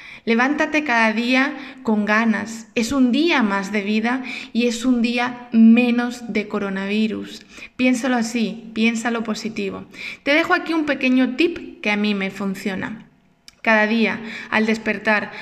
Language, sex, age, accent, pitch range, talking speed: Spanish, female, 20-39, Spanish, 215-265 Hz, 145 wpm